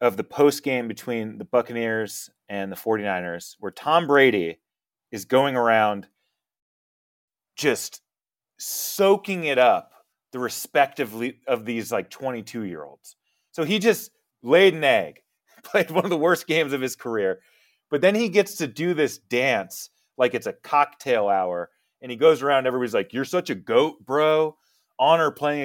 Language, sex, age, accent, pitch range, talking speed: English, male, 30-49, American, 120-170 Hz, 165 wpm